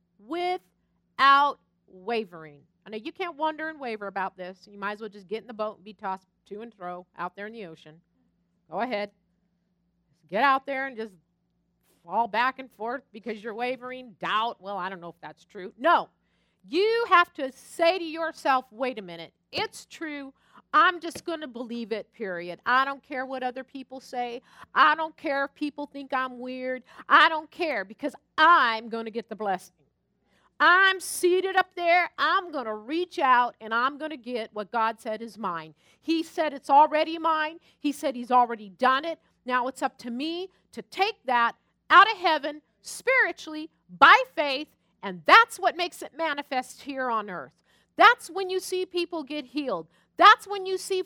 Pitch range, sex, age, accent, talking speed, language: 215-330 Hz, female, 50-69, American, 190 wpm, English